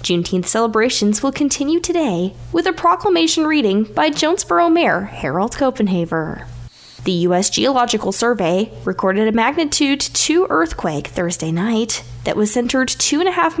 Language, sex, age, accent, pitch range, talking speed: English, female, 10-29, American, 180-295 Hz, 130 wpm